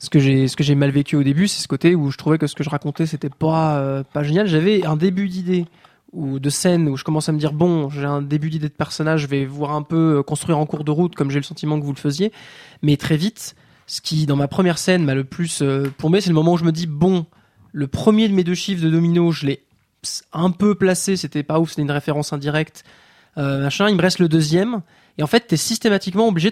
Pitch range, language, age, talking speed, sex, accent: 150-190 Hz, French, 20-39, 275 wpm, male, French